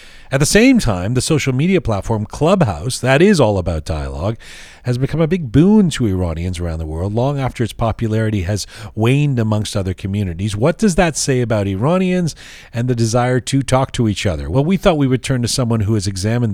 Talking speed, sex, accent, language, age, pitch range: 210 wpm, male, American, English, 40-59, 105-140 Hz